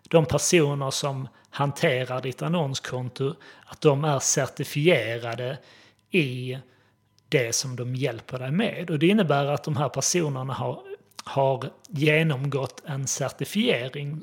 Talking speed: 120 wpm